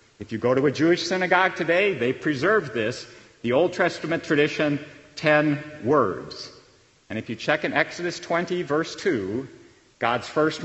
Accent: American